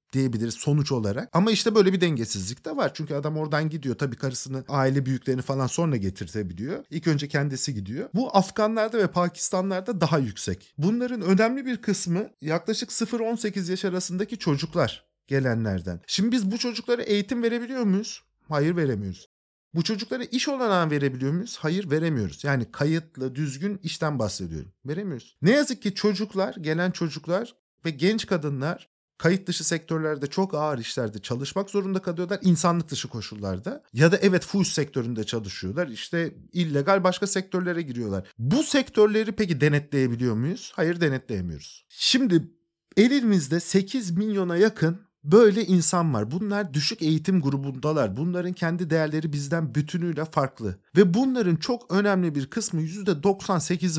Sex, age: male, 50-69